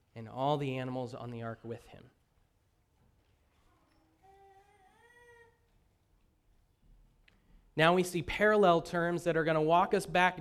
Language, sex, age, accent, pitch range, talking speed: English, male, 30-49, American, 130-175 Hz, 120 wpm